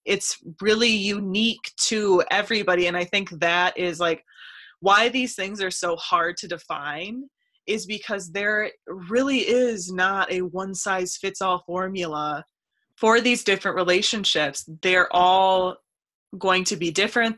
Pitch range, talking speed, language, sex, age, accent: 165-195 Hz, 140 wpm, English, female, 20-39, American